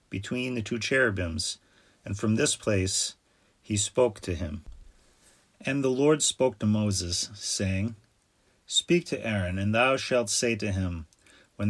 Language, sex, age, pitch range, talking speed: English, male, 30-49, 100-120 Hz, 150 wpm